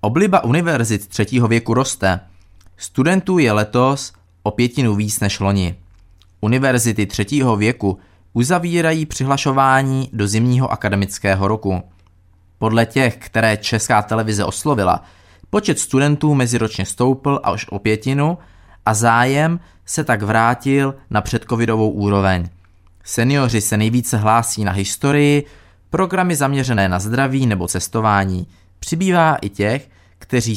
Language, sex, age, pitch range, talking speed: Czech, male, 20-39, 95-130 Hz, 115 wpm